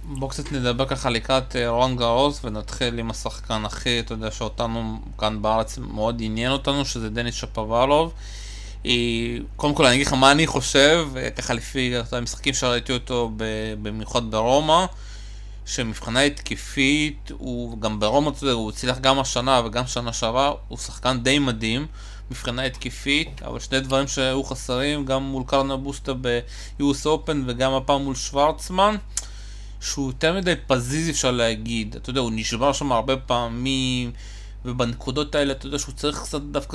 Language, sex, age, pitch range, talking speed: Hebrew, male, 20-39, 115-140 Hz, 145 wpm